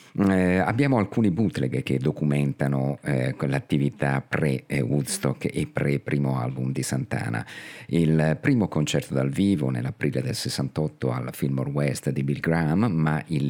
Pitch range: 70-80 Hz